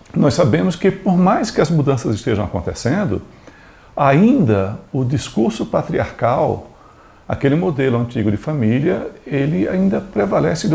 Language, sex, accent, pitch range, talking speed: Portuguese, male, Brazilian, 105-155 Hz, 130 wpm